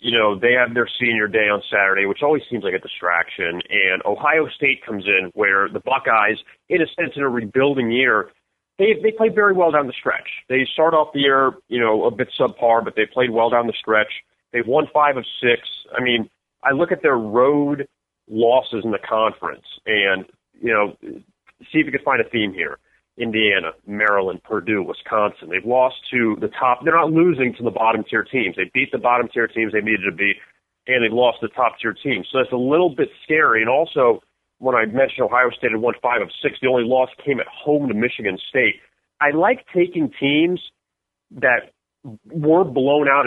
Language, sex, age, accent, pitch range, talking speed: English, male, 30-49, American, 115-145 Hz, 205 wpm